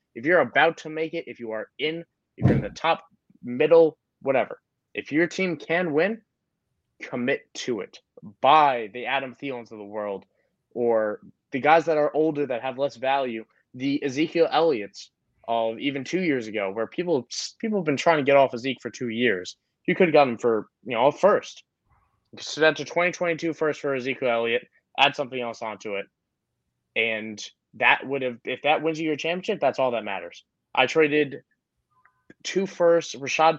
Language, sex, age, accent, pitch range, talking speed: English, male, 20-39, American, 120-160 Hz, 185 wpm